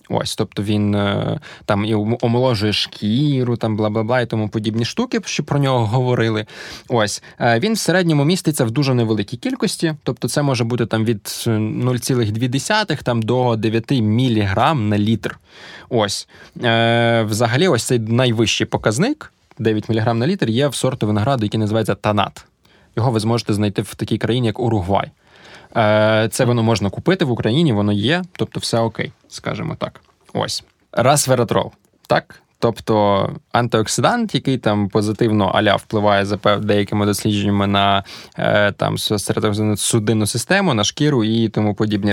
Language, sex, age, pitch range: Ukrainian, male, 20-39, 110-135 Hz